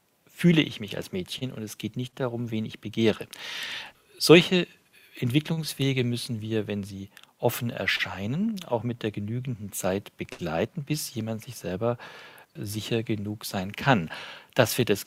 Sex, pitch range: male, 115-145 Hz